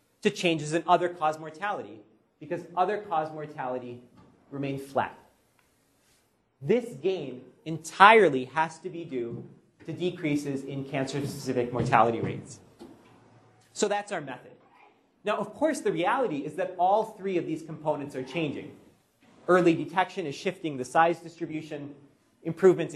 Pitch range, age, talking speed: 140-185 Hz, 30-49, 130 wpm